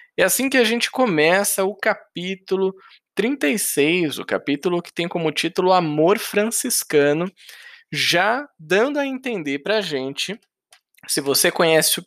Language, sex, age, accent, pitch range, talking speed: Portuguese, male, 20-39, Brazilian, 145-215 Hz, 130 wpm